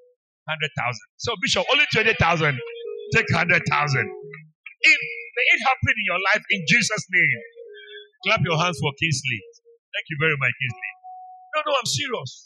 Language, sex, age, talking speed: English, male, 60-79, 150 wpm